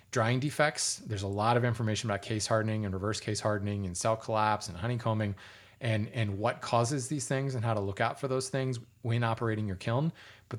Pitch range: 105-125 Hz